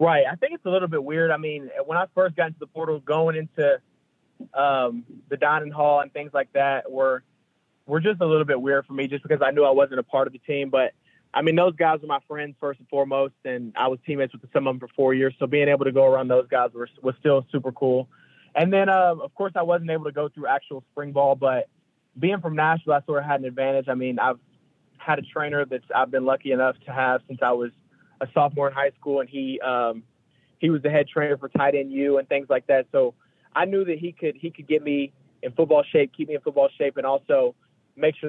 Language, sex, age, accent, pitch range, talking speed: English, male, 20-39, American, 130-155 Hz, 255 wpm